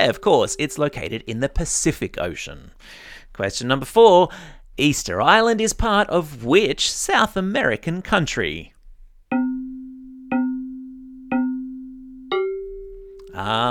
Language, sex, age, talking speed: English, male, 40-59, 90 wpm